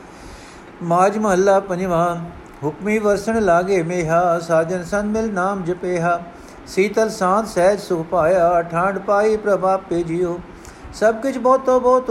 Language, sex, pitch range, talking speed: Punjabi, male, 170-200 Hz, 135 wpm